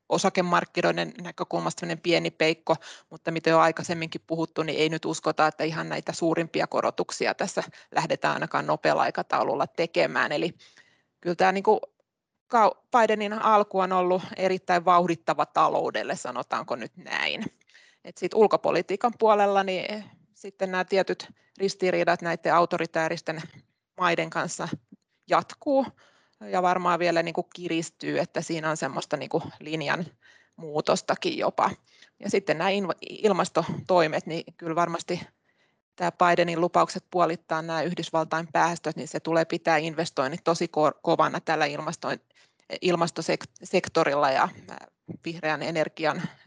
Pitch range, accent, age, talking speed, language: 160-185 Hz, native, 30-49, 115 wpm, Finnish